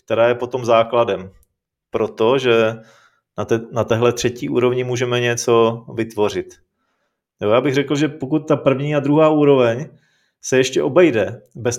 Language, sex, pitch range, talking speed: Czech, male, 120-145 Hz, 135 wpm